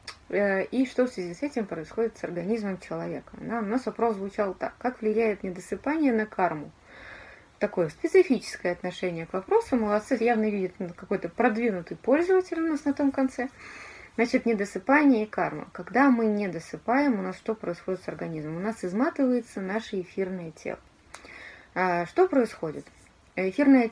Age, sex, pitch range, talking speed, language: 20-39, female, 180-245 Hz, 145 wpm, Russian